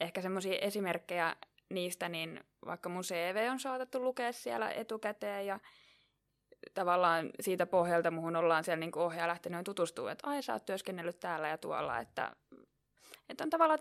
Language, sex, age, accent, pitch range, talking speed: Finnish, female, 20-39, native, 160-190 Hz, 155 wpm